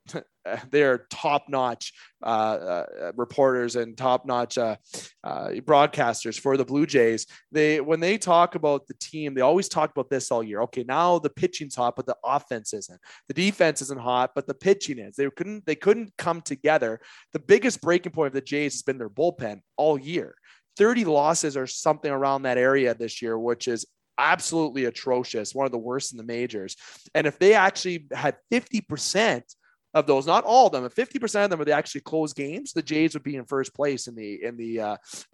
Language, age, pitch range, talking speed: English, 20-39, 125-155 Hz, 200 wpm